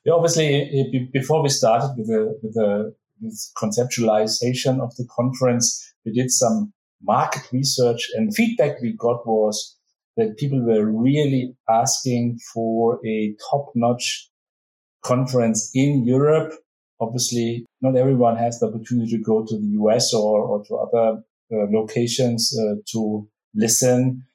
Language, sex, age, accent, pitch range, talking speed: English, male, 50-69, German, 110-135 Hz, 140 wpm